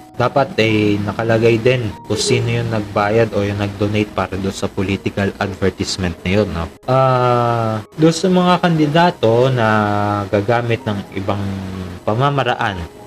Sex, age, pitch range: male, 20-39, 100-120 Hz